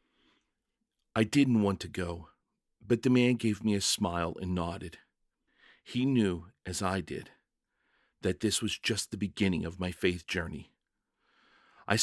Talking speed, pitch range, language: 150 wpm, 90-110 Hz, English